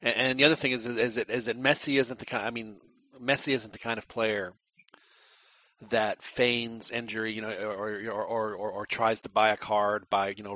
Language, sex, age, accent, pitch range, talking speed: English, male, 40-59, American, 110-125 Hz, 215 wpm